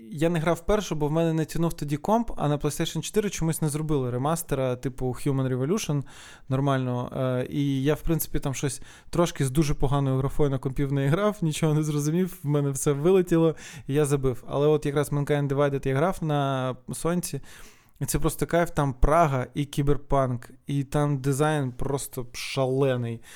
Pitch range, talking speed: 135-165 Hz, 180 wpm